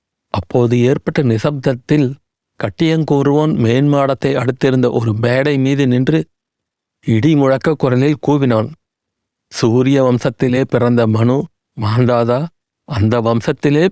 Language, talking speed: Tamil, 80 wpm